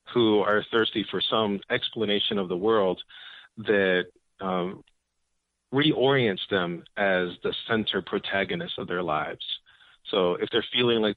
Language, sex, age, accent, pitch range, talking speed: English, male, 40-59, American, 95-115 Hz, 135 wpm